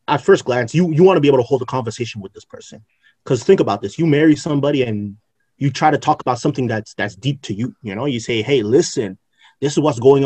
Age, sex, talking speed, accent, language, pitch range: 30-49, male, 265 wpm, American, English, 120-155 Hz